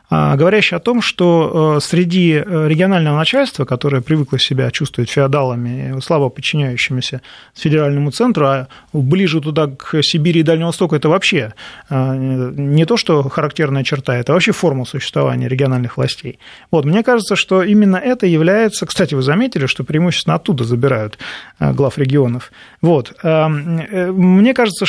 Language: Russian